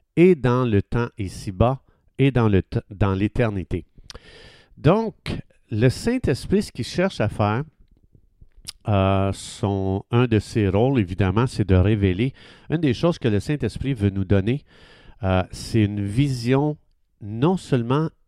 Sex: male